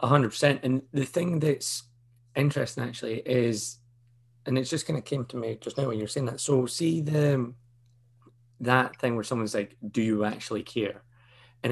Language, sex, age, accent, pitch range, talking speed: English, male, 30-49, British, 110-125 Hz, 185 wpm